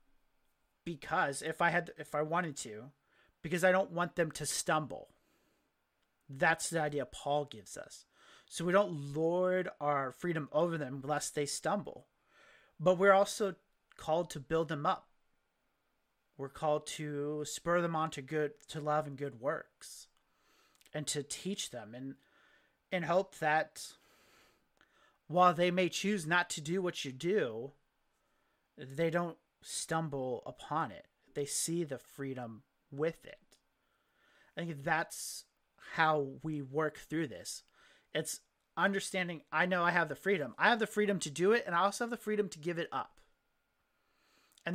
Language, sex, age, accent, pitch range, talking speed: English, male, 30-49, American, 145-180 Hz, 155 wpm